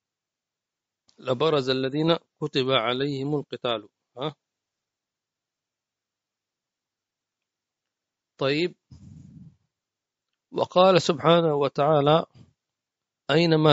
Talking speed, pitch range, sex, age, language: 50 wpm, 130-165 Hz, male, 40-59, English